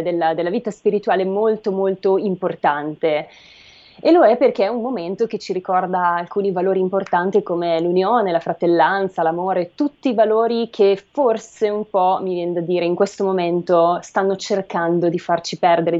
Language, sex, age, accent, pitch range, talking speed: Italian, female, 20-39, native, 175-215 Hz, 165 wpm